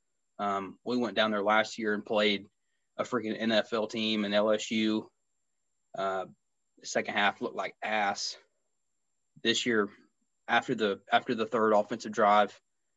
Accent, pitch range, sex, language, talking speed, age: American, 105-125 Hz, male, English, 140 wpm, 20-39